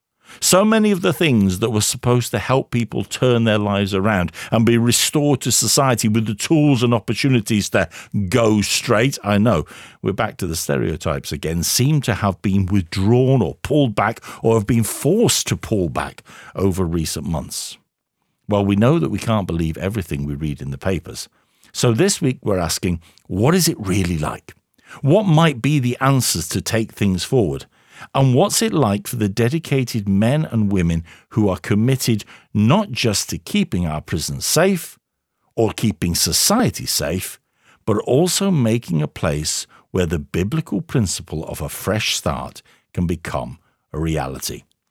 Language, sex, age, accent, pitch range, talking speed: English, male, 50-69, British, 95-140 Hz, 170 wpm